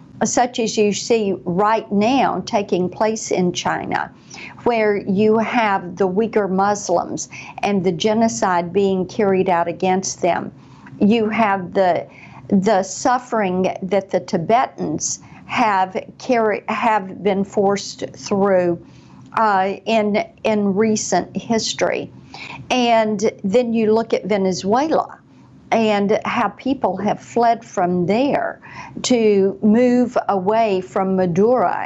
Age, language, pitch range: 50-69, English, 190-225 Hz